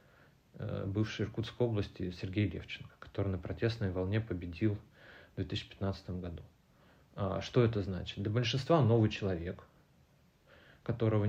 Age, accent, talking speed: 30-49, native, 115 wpm